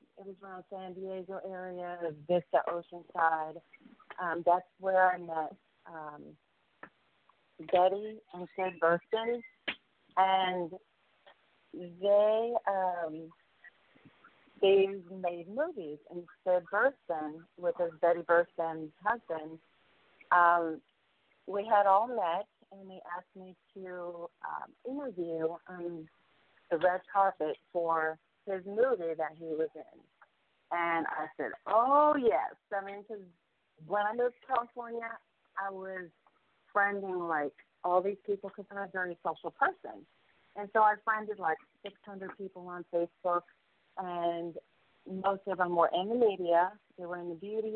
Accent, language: American, English